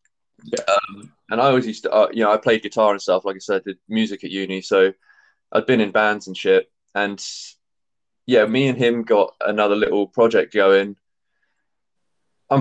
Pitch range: 100-115 Hz